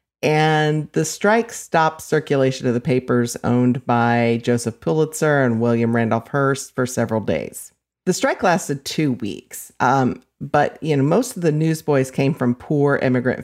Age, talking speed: 40-59, 160 wpm